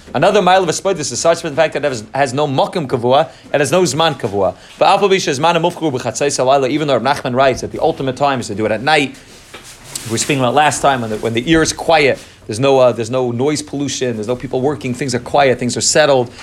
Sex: male